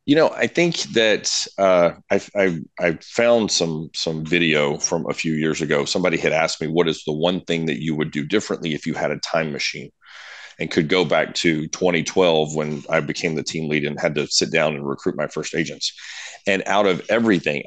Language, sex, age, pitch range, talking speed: English, male, 30-49, 80-100 Hz, 215 wpm